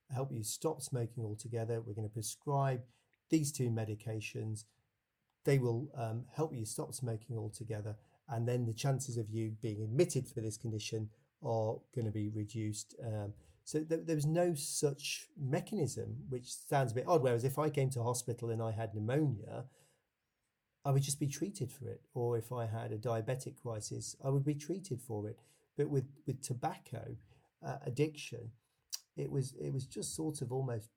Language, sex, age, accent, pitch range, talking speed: English, male, 40-59, British, 110-140 Hz, 180 wpm